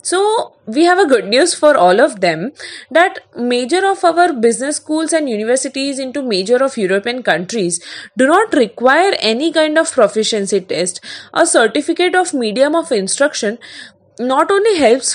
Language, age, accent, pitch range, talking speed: English, 20-39, Indian, 225-335 Hz, 160 wpm